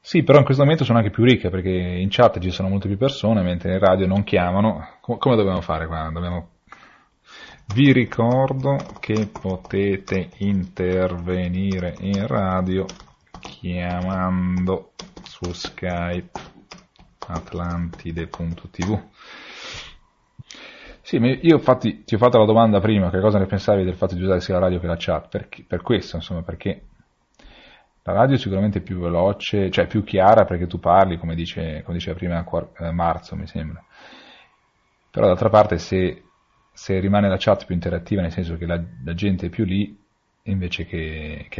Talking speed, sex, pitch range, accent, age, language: 155 wpm, male, 85-105 Hz, native, 30-49, Italian